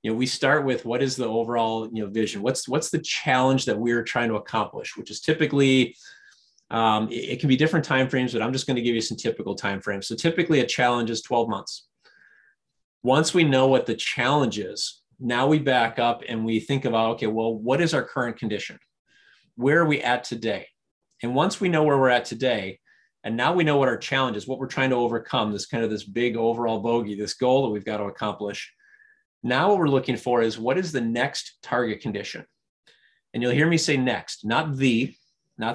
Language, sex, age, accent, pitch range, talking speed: English, male, 30-49, American, 115-140 Hz, 220 wpm